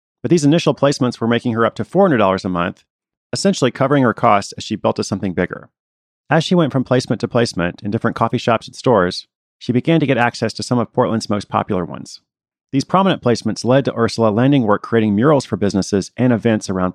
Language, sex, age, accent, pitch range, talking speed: English, male, 40-59, American, 100-130 Hz, 220 wpm